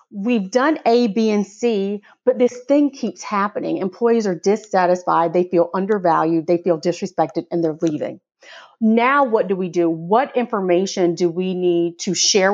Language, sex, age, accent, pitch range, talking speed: English, female, 30-49, American, 175-255 Hz, 170 wpm